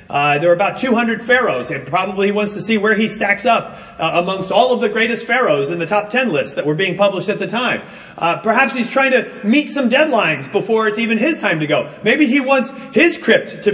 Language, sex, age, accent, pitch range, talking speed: English, male, 40-59, American, 195-265 Hz, 245 wpm